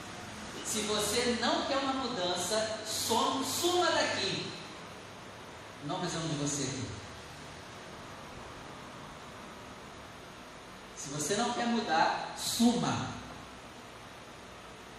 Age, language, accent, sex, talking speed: 40-59, Portuguese, Brazilian, male, 80 wpm